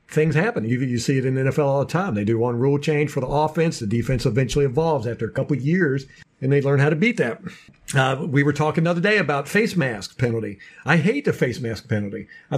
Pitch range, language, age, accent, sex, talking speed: 140-205 Hz, English, 50-69, American, male, 255 wpm